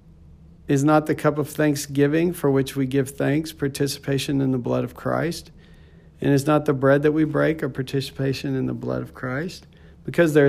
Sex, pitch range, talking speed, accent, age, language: male, 120-155 Hz, 195 wpm, American, 50-69, English